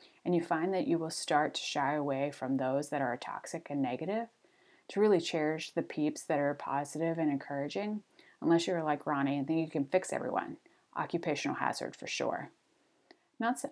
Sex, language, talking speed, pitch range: female, English, 185 wpm, 150-200 Hz